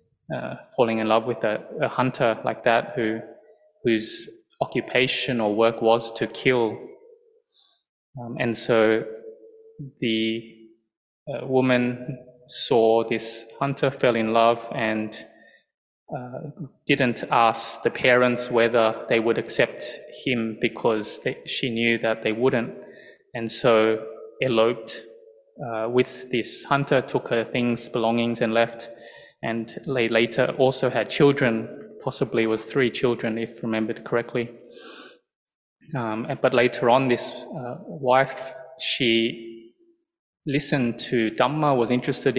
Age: 20-39